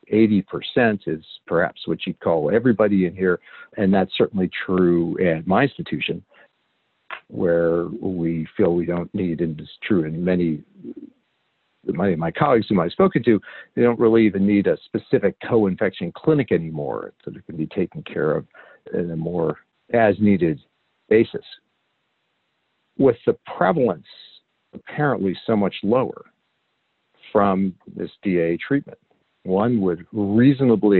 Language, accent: English, American